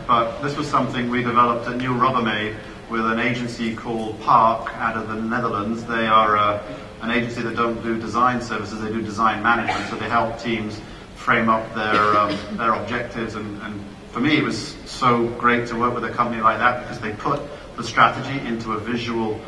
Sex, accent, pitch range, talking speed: male, British, 110-120 Hz, 195 wpm